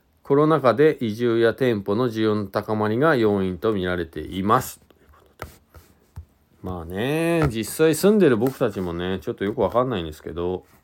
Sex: male